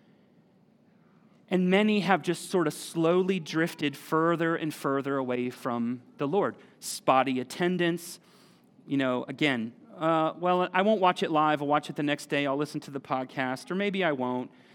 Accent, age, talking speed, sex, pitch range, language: American, 40-59, 170 wpm, male, 160-230 Hz, English